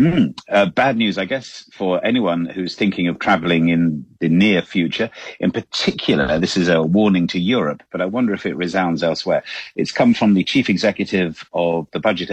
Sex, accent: male, British